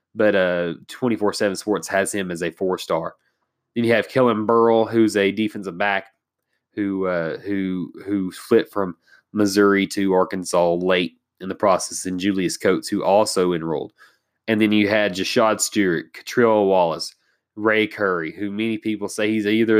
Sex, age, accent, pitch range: male, 30-49, American, 95-110 Hz